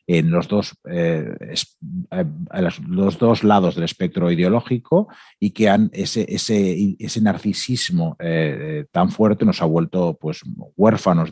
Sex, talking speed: male, 145 wpm